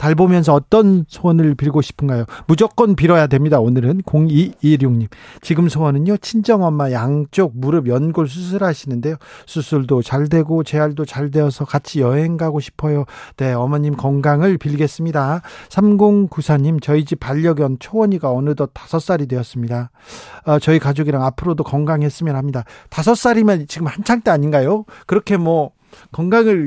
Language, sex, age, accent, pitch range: Korean, male, 40-59, native, 140-185 Hz